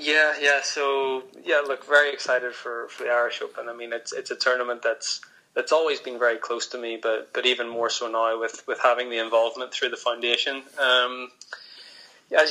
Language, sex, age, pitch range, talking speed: English, male, 20-39, 115-125 Hz, 200 wpm